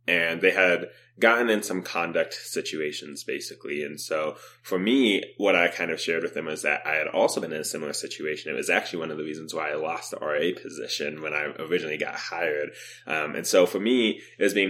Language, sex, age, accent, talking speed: English, male, 20-39, American, 230 wpm